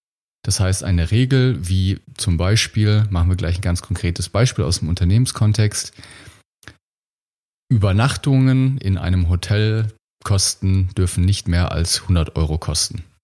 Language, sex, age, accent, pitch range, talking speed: German, male, 30-49, German, 90-110 Hz, 130 wpm